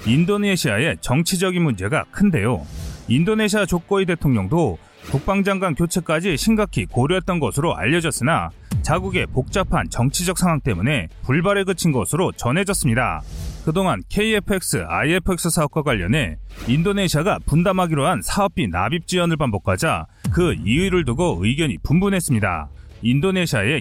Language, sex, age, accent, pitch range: Korean, male, 30-49, native, 120-195 Hz